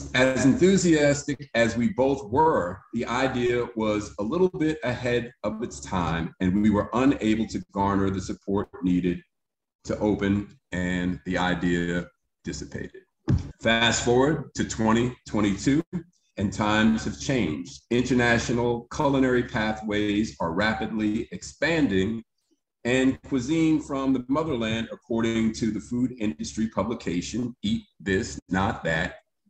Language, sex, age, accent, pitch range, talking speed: English, male, 40-59, American, 105-135 Hz, 120 wpm